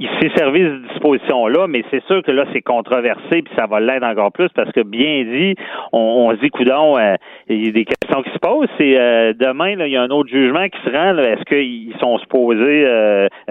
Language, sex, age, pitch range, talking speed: French, male, 40-59, 115-140 Hz, 240 wpm